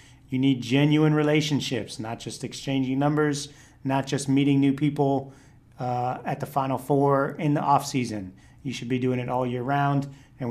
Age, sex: 40-59, male